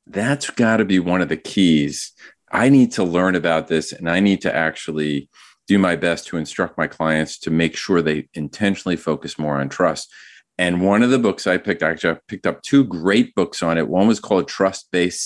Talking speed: 210 wpm